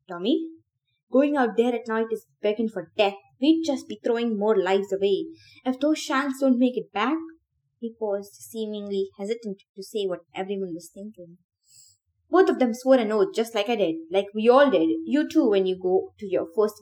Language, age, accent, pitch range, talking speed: English, 20-39, Indian, 180-255 Hz, 200 wpm